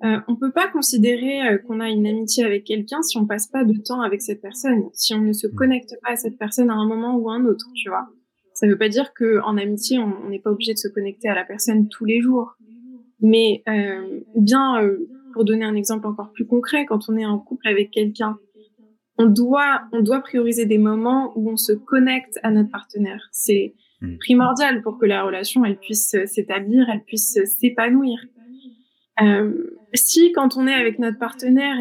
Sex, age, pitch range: female, 20-39, 215-255 Hz